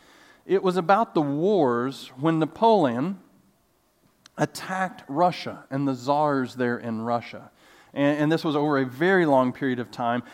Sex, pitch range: male, 140-230 Hz